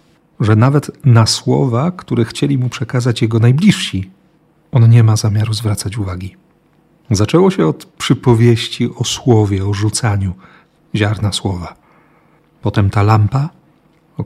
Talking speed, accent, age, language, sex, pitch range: 125 wpm, native, 40-59, Polish, male, 105-125 Hz